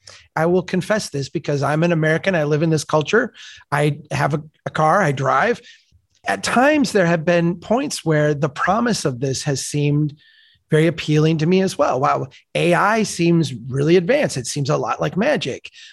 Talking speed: 190 wpm